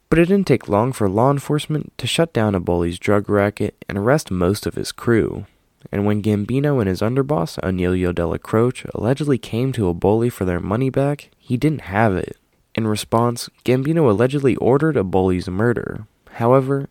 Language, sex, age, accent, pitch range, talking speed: English, male, 20-39, American, 95-125 Hz, 175 wpm